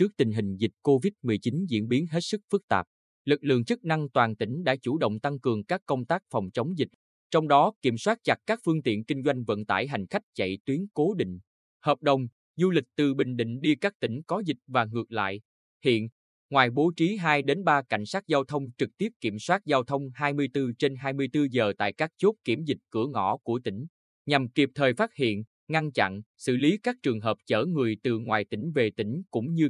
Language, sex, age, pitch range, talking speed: Vietnamese, male, 20-39, 115-160 Hz, 220 wpm